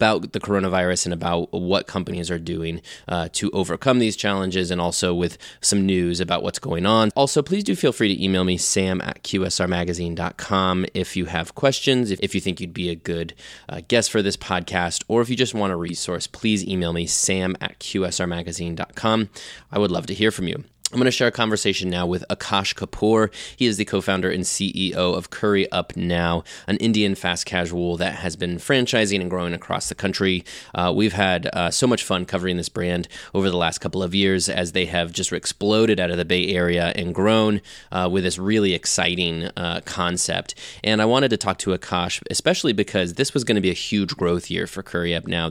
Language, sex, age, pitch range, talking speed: English, male, 20-39, 85-100 Hz, 210 wpm